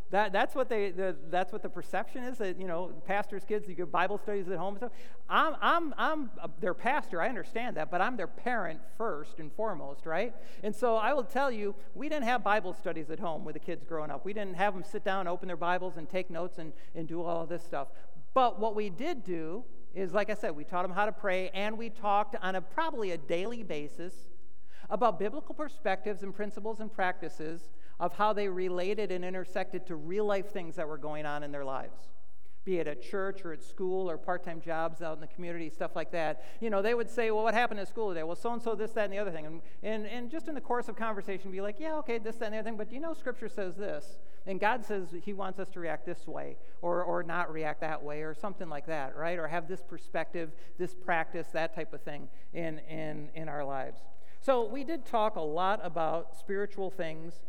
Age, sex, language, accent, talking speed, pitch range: 50-69, male, English, American, 240 wpm, 165-210 Hz